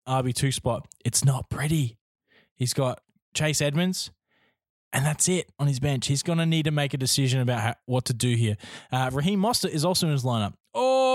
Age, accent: 20-39, Australian